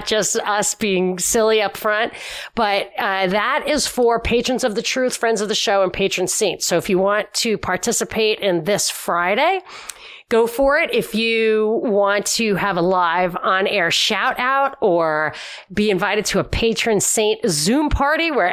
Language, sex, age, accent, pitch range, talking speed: English, female, 30-49, American, 195-240 Hz, 175 wpm